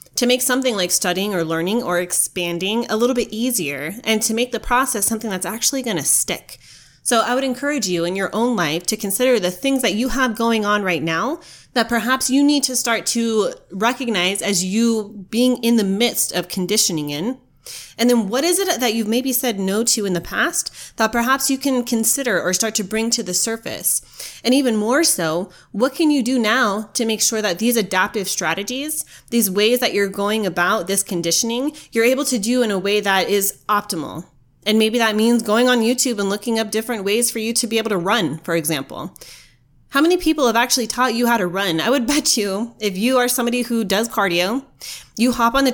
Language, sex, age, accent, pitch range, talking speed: English, female, 30-49, American, 190-250 Hz, 220 wpm